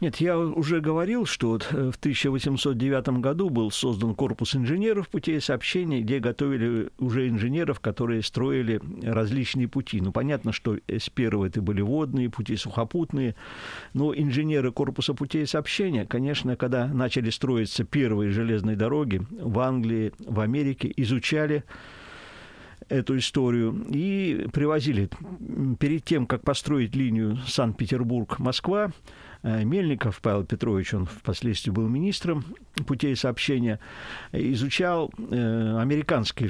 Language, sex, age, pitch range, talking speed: Russian, male, 50-69, 110-140 Hz, 115 wpm